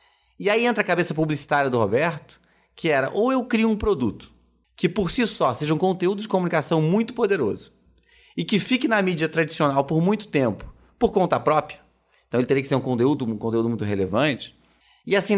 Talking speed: 200 wpm